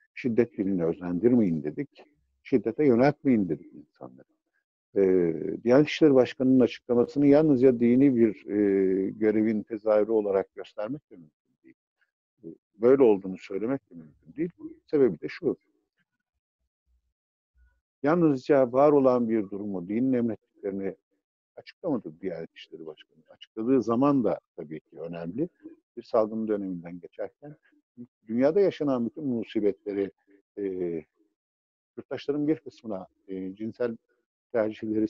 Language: Turkish